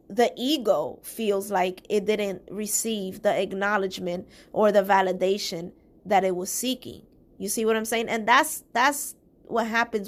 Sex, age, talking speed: female, 20-39, 155 wpm